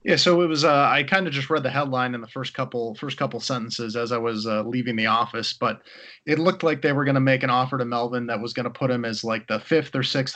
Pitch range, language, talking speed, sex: 115-130 Hz, English, 295 wpm, male